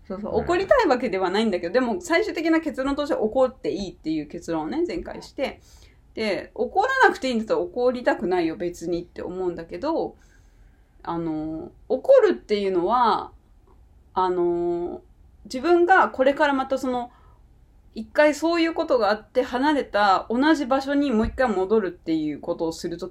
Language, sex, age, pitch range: Japanese, female, 20-39, 205-325 Hz